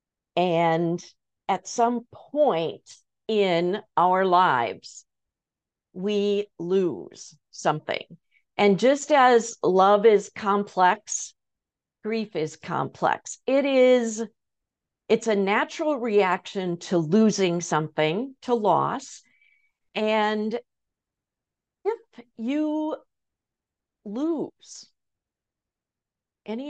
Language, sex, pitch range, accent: English, female, 175-235 Hz, American